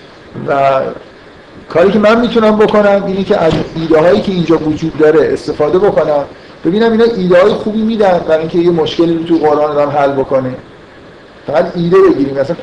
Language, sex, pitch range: Persian, male, 140-180 Hz